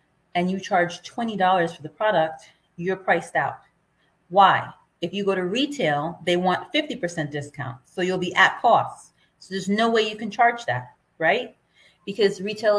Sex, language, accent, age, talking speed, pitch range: female, English, American, 30-49, 170 wpm, 170-210 Hz